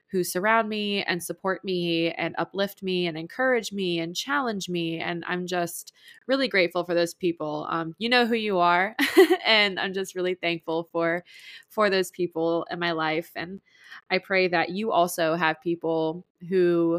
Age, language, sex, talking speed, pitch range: 20-39, English, female, 175 wpm, 170-200 Hz